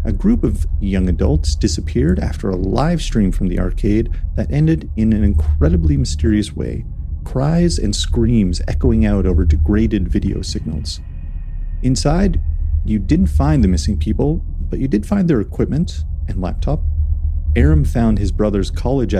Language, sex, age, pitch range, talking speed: English, male, 40-59, 75-105 Hz, 155 wpm